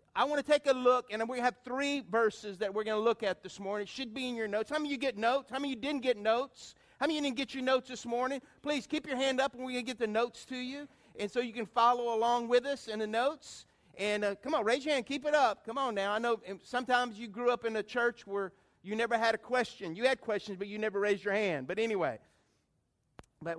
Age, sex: 50-69, male